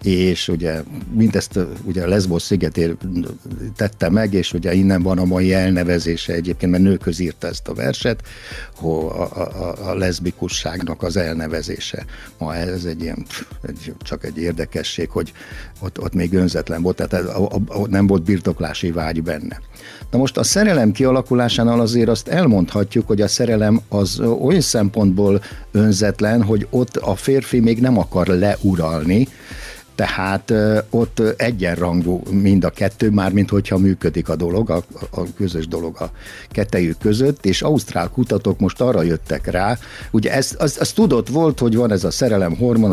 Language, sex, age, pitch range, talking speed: Hungarian, male, 60-79, 90-110 Hz, 145 wpm